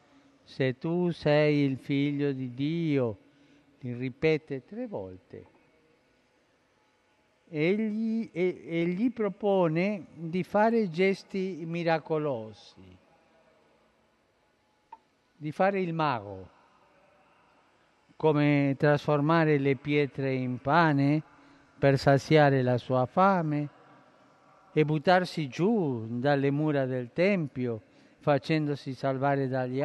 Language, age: Italian, 50-69